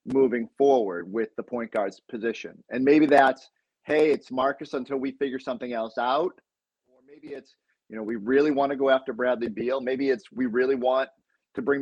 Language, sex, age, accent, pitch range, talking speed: English, male, 30-49, American, 120-150 Hz, 200 wpm